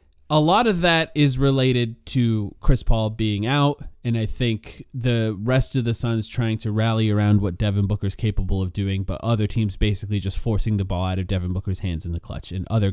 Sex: male